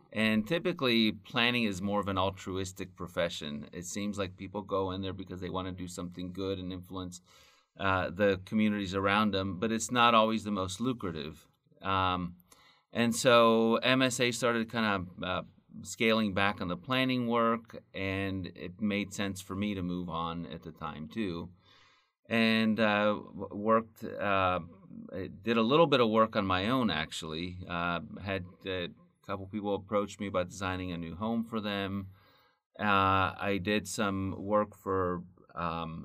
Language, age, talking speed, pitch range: English, 30-49, 165 wpm, 90-110 Hz